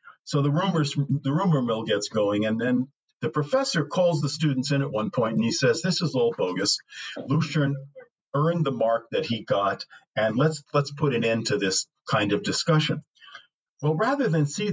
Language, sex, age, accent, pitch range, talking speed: English, male, 50-69, American, 125-165 Hz, 200 wpm